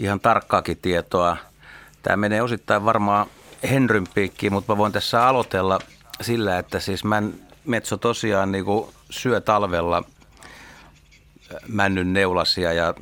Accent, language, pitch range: native, Finnish, 85-105 Hz